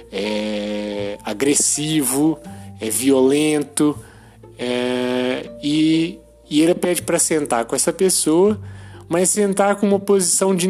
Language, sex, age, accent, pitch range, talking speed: Portuguese, male, 20-39, Brazilian, 125-185 Hz, 105 wpm